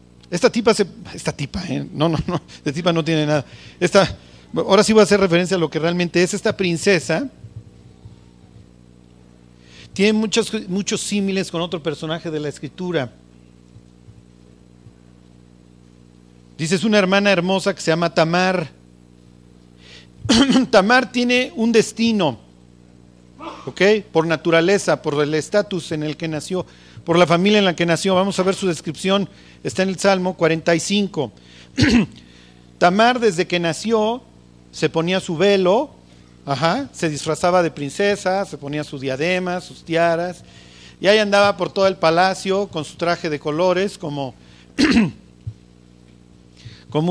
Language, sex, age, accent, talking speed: Spanish, male, 40-59, Mexican, 140 wpm